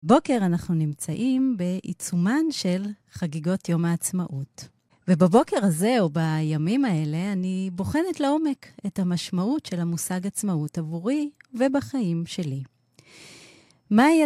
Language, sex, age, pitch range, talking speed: Hebrew, female, 30-49, 165-230 Hz, 105 wpm